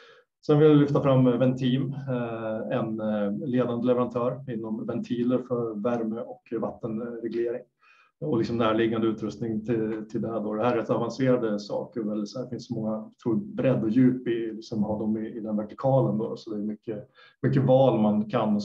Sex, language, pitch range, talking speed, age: male, Swedish, 110-125 Hz, 175 wpm, 30-49